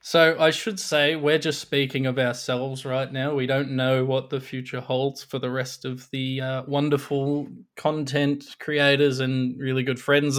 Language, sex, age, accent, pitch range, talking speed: English, male, 20-39, Australian, 125-145 Hz, 180 wpm